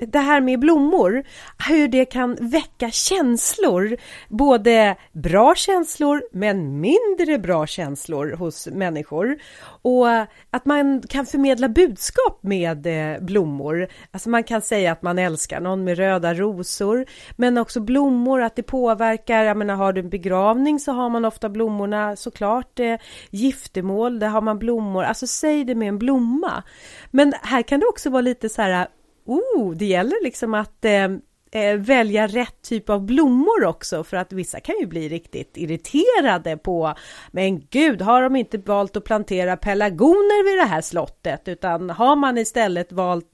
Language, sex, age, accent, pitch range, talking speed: Swedish, female, 30-49, native, 180-260 Hz, 160 wpm